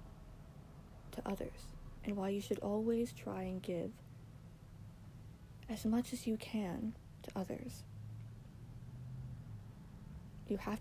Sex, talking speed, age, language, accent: female, 100 wpm, 40-59, English, American